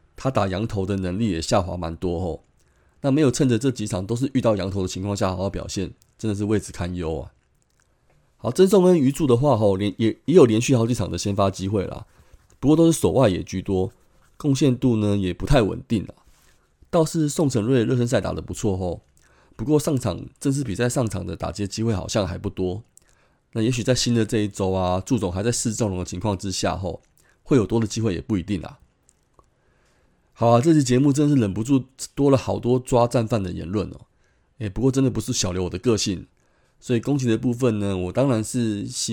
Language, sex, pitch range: Chinese, male, 95-130 Hz